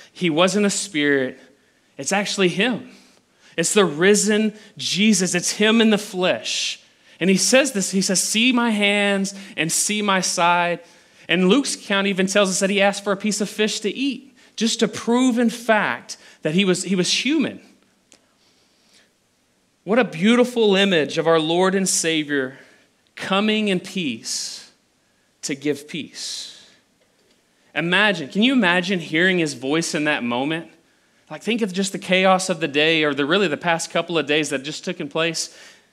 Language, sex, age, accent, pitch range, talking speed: English, male, 30-49, American, 165-210 Hz, 170 wpm